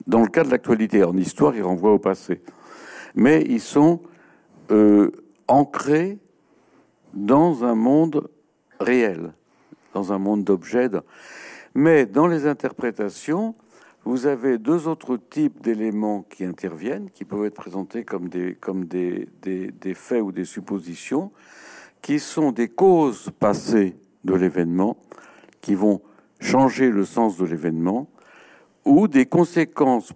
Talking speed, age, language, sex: 135 wpm, 60-79, French, male